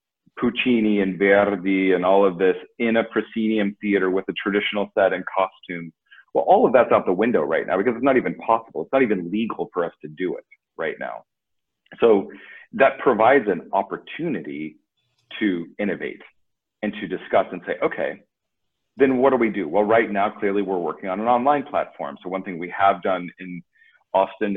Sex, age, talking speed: male, 40-59, 190 wpm